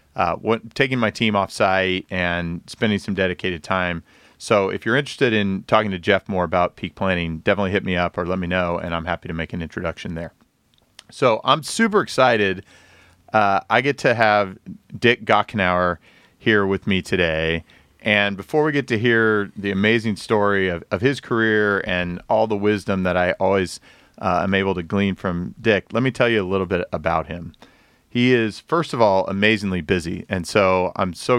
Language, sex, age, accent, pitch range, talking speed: English, male, 40-59, American, 90-110 Hz, 195 wpm